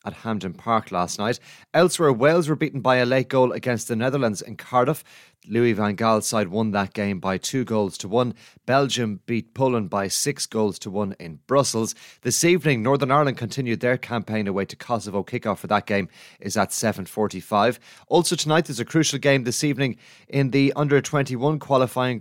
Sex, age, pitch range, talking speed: male, 30-49, 105-135 Hz, 190 wpm